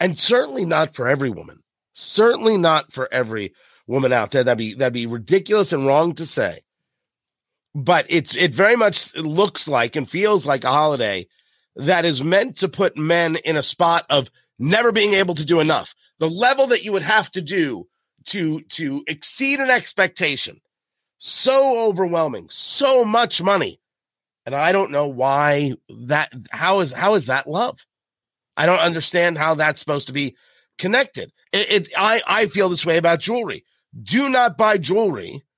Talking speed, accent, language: 170 wpm, American, English